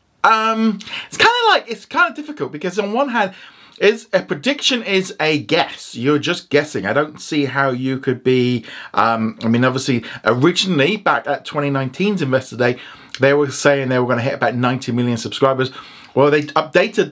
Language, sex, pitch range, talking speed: English, male, 130-175 Hz, 190 wpm